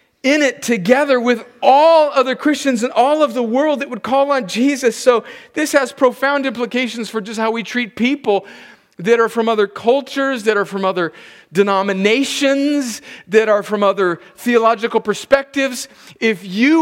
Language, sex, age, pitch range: English, male, 40-59, 155-240 Hz